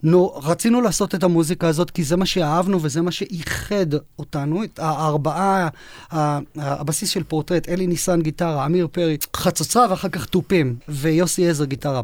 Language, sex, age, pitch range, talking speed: Hebrew, male, 30-49, 150-185 Hz, 160 wpm